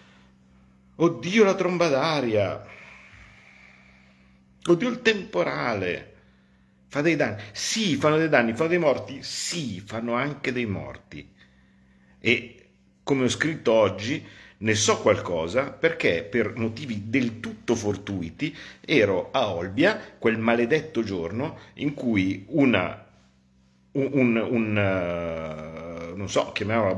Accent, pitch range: native, 80-120 Hz